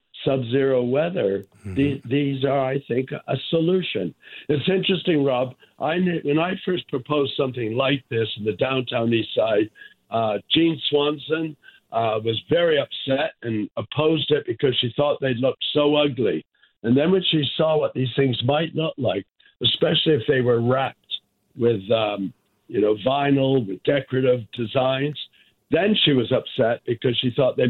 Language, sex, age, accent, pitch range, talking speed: English, male, 60-79, American, 120-145 Hz, 160 wpm